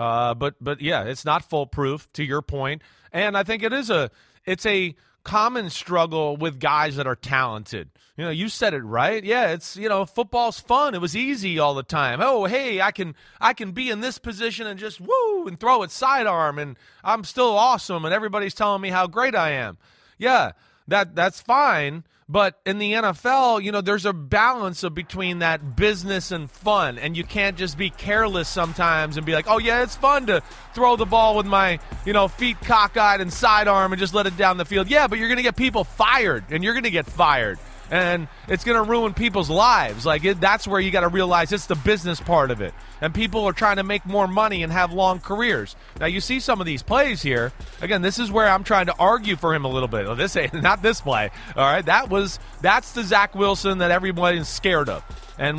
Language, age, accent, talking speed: English, 30-49, American, 230 wpm